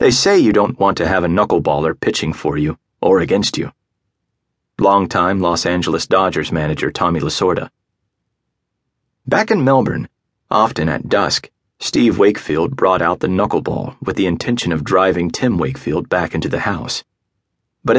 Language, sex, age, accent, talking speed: English, male, 30-49, American, 155 wpm